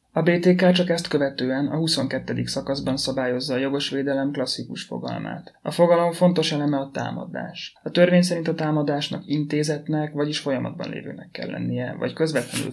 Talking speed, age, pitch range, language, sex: 150 wpm, 30-49, 135-160 Hz, Hungarian, male